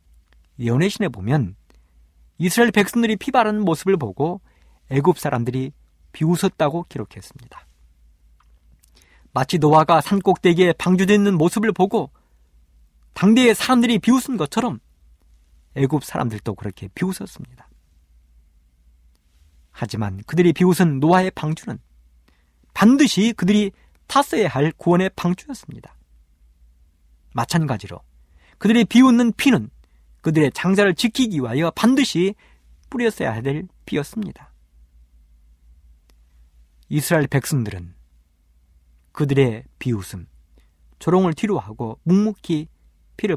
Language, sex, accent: Korean, male, native